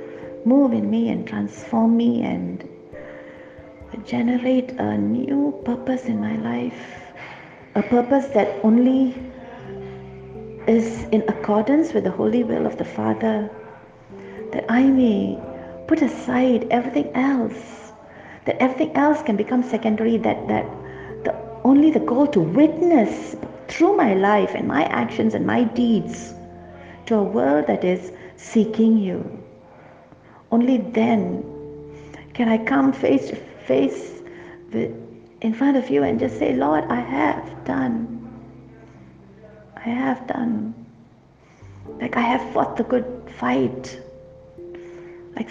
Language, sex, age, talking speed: English, female, 50-69, 125 wpm